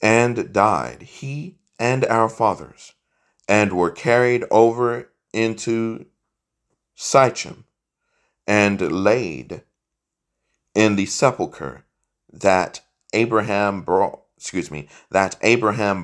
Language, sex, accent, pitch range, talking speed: English, male, American, 85-115 Hz, 90 wpm